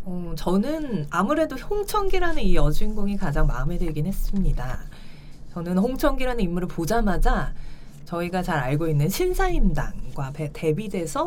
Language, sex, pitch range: Korean, female, 155-220 Hz